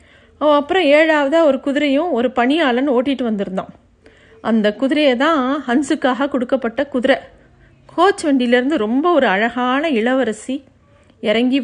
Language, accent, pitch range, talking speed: Tamil, native, 225-270 Hz, 110 wpm